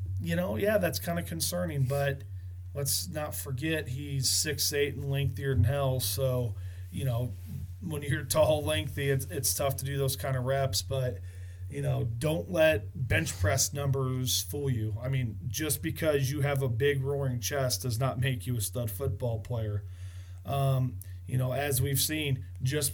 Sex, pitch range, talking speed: male, 100-140 Hz, 180 wpm